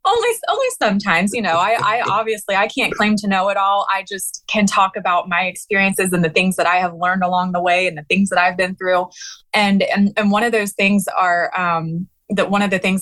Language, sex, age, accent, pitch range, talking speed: English, female, 20-39, American, 180-205 Hz, 245 wpm